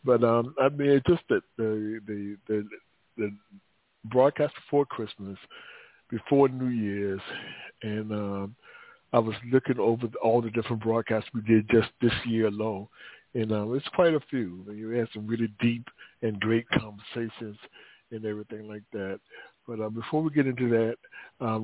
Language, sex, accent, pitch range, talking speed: English, male, American, 110-130 Hz, 165 wpm